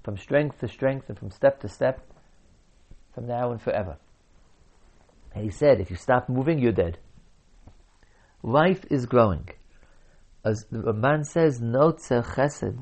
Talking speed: 145 wpm